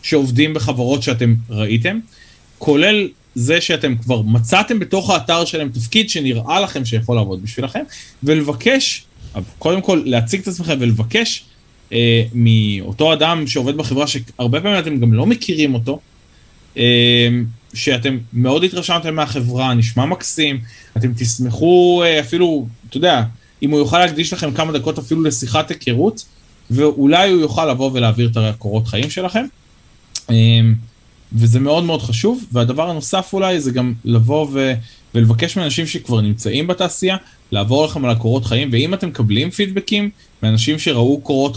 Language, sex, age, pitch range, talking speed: Hebrew, male, 20-39, 115-155 Hz, 140 wpm